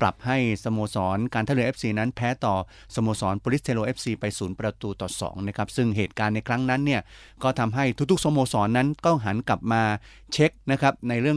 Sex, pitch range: male, 105-125 Hz